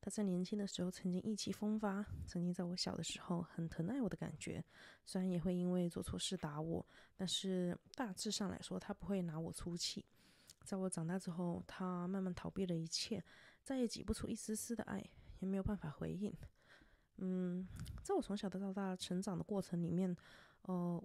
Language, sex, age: Chinese, female, 20-39